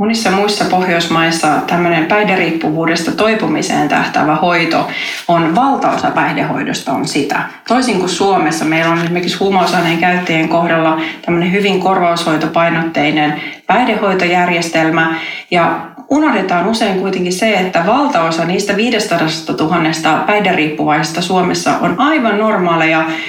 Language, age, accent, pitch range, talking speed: Finnish, 30-49, native, 165-210 Hz, 105 wpm